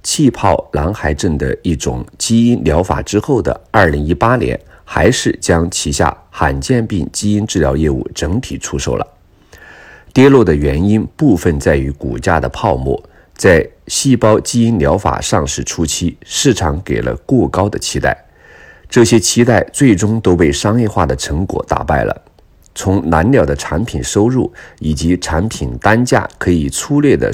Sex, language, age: male, Chinese, 50-69